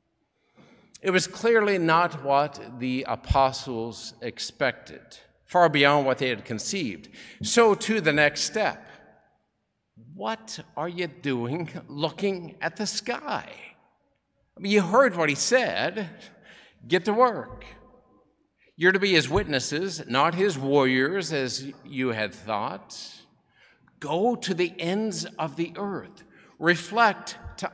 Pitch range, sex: 140-200 Hz, male